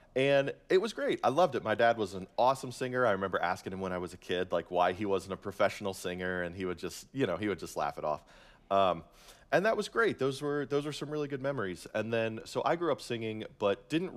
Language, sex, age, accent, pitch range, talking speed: English, male, 30-49, American, 90-130 Hz, 265 wpm